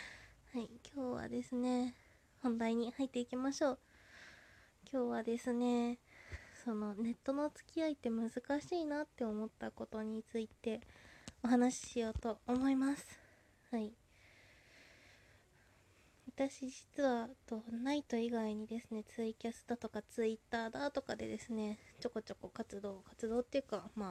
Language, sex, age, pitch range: Japanese, female, 20-39, 215-255 Hz